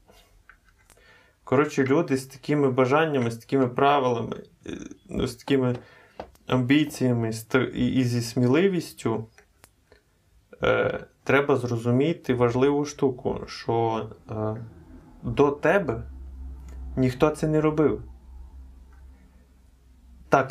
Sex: male